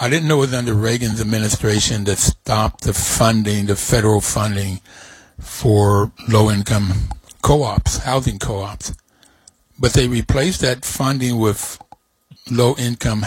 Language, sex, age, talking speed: English, male, 60-79, 120 wpm